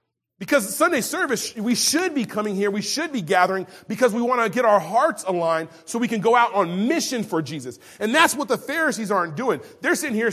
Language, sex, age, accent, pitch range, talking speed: English, male, 30-49, American, 200-275 Hz, 225 wpm